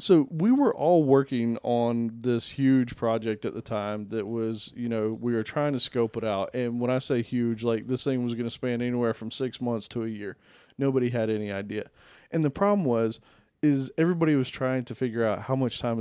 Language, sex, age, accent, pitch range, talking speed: English, male, 20-39, American, 120-150 Hz, 225 wpm